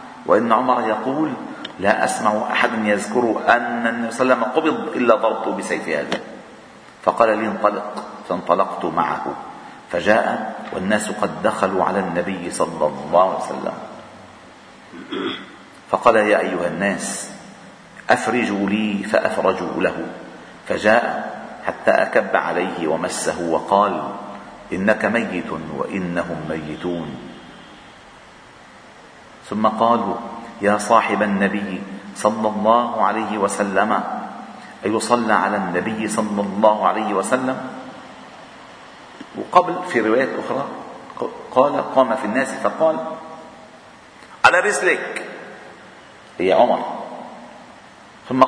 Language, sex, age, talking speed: Arabic, male, 50-69, 100 wpm